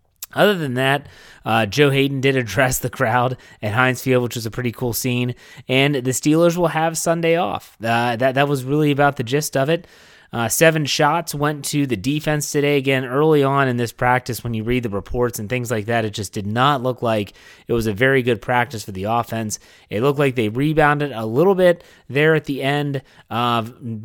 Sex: male